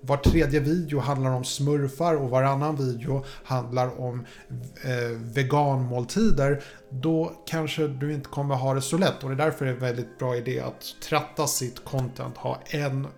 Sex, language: male, Swedish